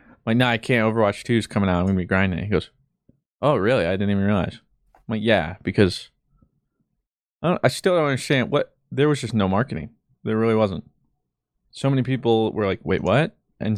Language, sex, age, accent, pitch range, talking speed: English, male, 20-39, American, 95-120 Hz, 220 wpm